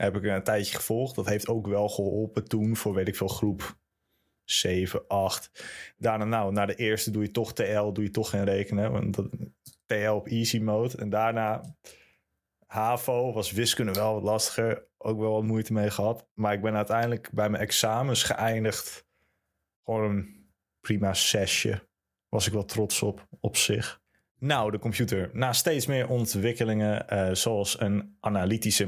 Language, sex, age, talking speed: Dutch, male, 20-39, 170 wpm